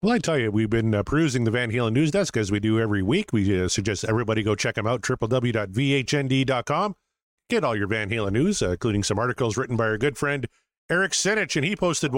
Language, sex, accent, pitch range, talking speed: English, male, American, 105-140 Hz, 230 wpm